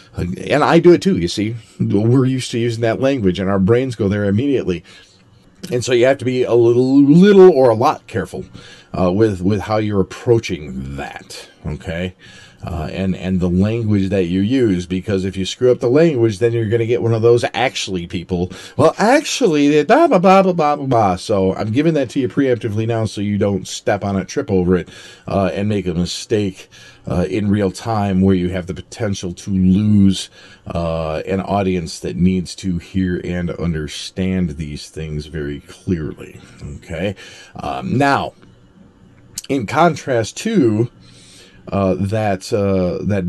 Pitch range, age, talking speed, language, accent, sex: 95-120 Hz, 40-59, 180 wpm, English, American, male